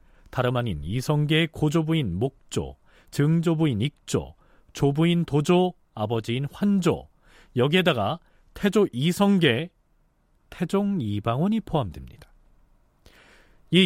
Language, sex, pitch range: Korean, male, 110-160 Hz